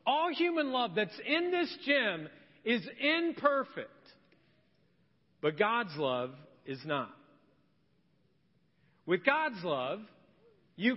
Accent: American